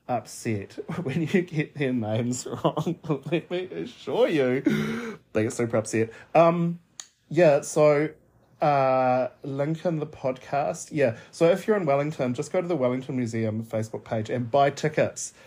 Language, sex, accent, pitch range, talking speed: English, male, Australian, 120-150 Hz, 155 wpm